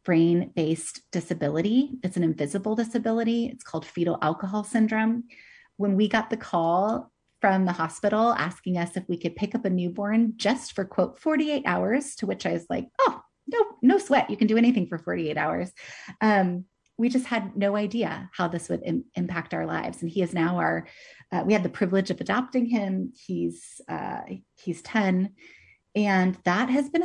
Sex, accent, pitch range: female, American, 170-215 Hz